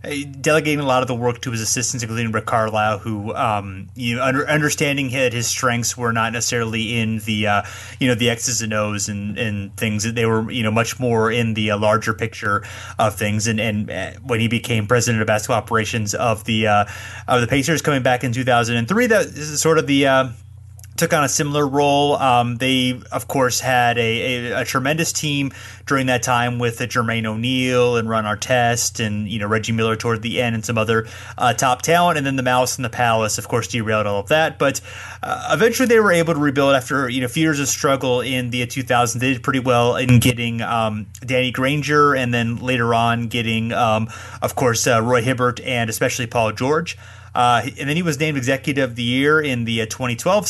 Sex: male